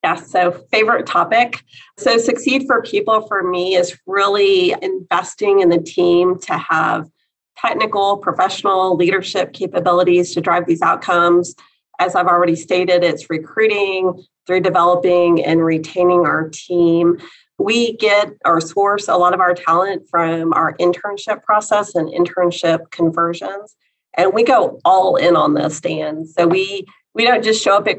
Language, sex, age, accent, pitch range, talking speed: English, female, 40-59, American, 170-200 Hz, 150 wpm